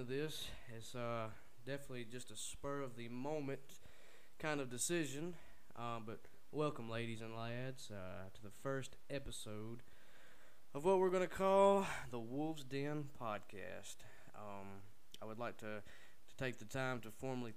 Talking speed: 145 wpm